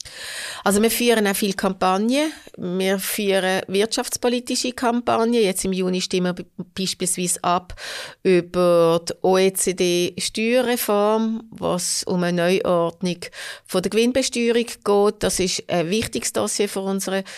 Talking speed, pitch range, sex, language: 115 wpm, 180-220 Hz, female, German